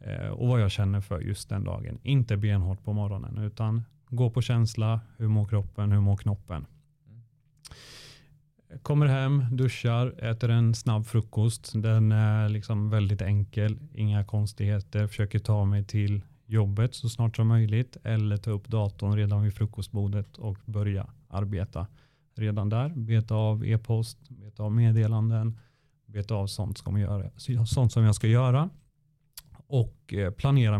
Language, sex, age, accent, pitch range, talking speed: Swedish, male, 30-49, native, 105-125 Hz, 150 wpm